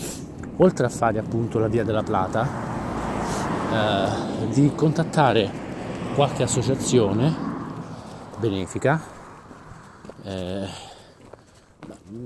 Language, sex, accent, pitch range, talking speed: Italian, male, native, 100-115 Hz, 75 wpm